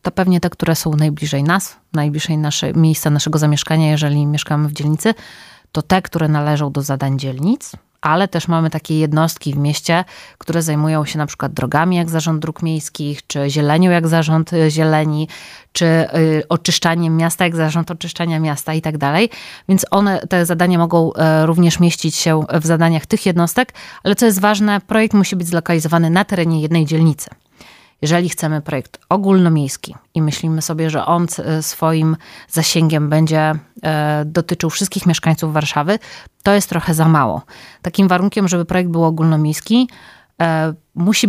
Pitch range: 155-175 Hz